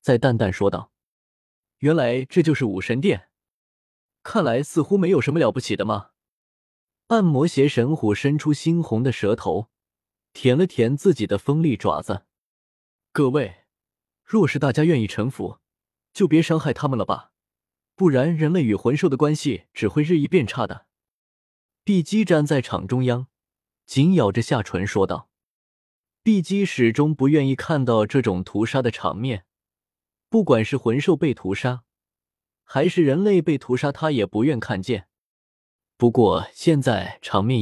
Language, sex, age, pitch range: Chinese, male, 20-39, 110-160 Hz